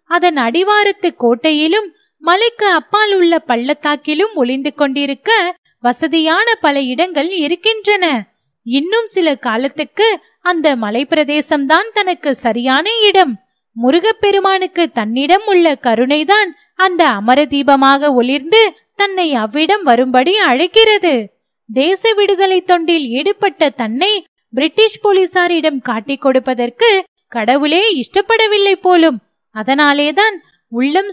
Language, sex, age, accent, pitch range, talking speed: Tamil, female, 20-39, native, 275-385 Hz, 95 wpm